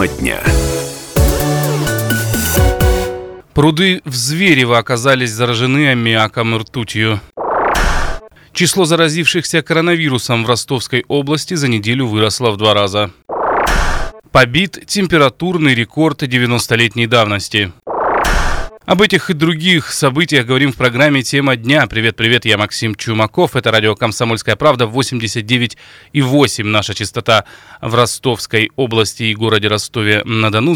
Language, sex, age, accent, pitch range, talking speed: Russian, male, 20-39, native, 110-145 Hz, 100 wpm